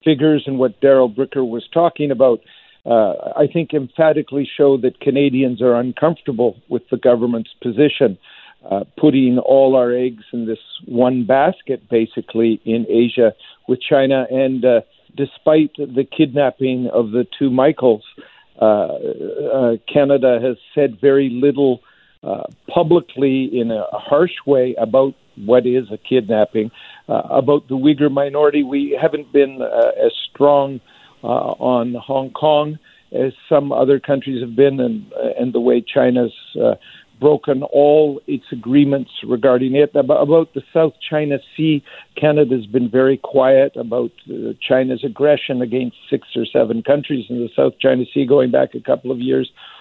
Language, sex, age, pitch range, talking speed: English, male, 50-69, 125-150 Hz, 150 wpm